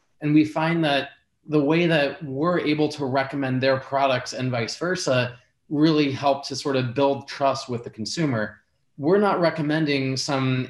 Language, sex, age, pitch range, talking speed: English, male, 20-39, 125-145 Hz, 170 wpm